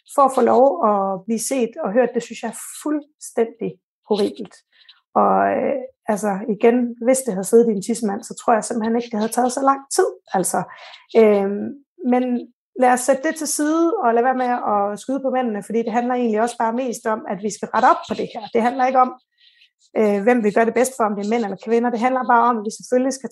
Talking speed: 235 wpm